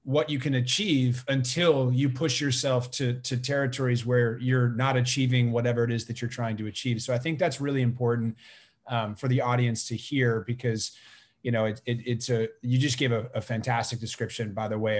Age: 30-49